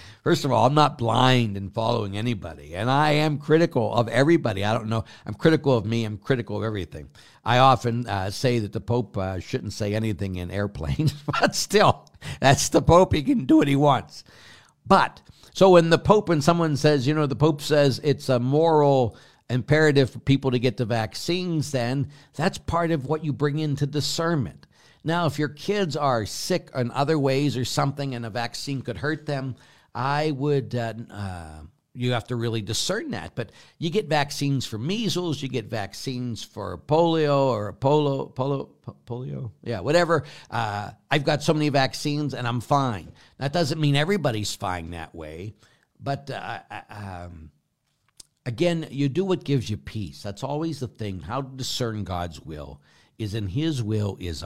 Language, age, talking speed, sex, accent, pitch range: English, 60-79, 185 wpm, male, American, 110-150 Hz